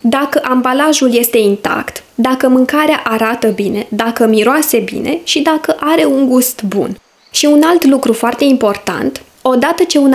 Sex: female